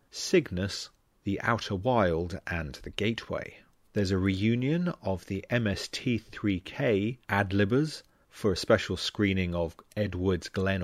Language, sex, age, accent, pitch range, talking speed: English, male, 30-49, British, 90-110 Hz, 115 wpm